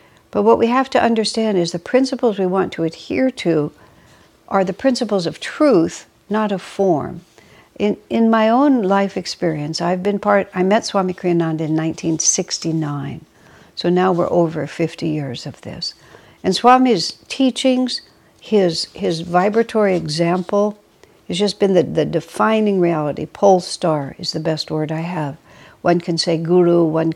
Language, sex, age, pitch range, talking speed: English, female, 60-79, 160-205 Hz, 160 wpm